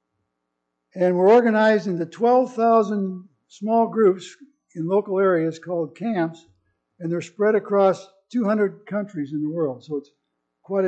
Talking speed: 130 wpm